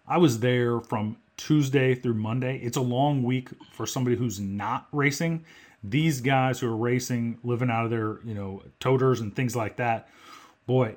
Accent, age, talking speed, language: American, 30-49, 180 wpm, English